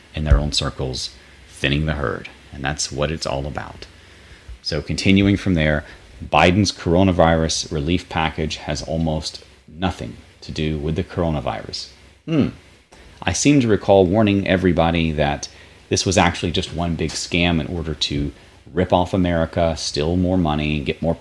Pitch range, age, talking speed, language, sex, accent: 75-90 Hz, 30-49, 155 wpm, English, male, American